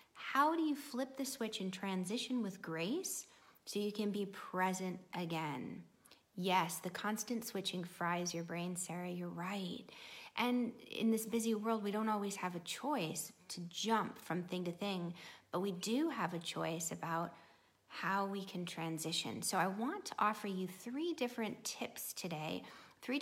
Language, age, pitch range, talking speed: English, 30-49, 175-240 Hz, 170 wpm